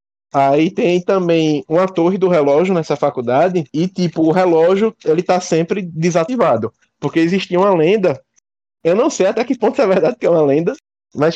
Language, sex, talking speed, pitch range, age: Portuguese, male, 180 wpm, 140-190 Hz, 20-39